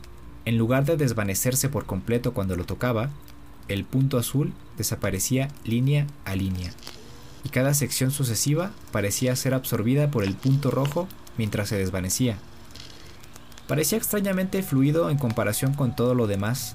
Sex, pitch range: male, 105-135 Hz